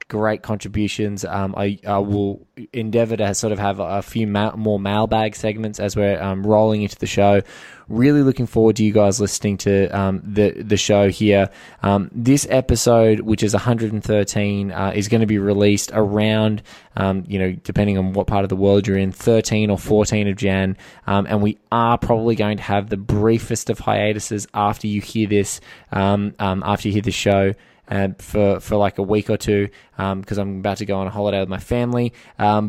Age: 20-39